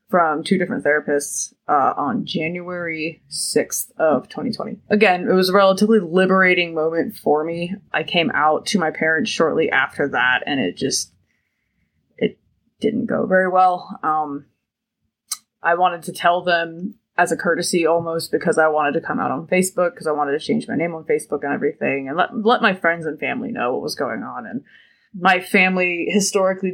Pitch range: 160-190 Hz